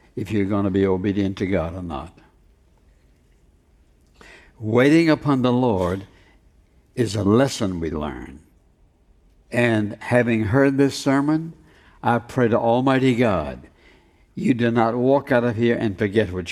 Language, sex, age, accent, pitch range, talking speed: English, male, 60-79, American, 95-125 Hz, 140 wpm